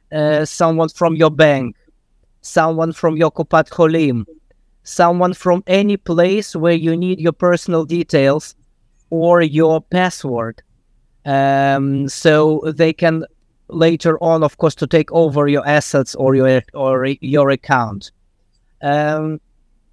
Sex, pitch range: male, 145-170 Hz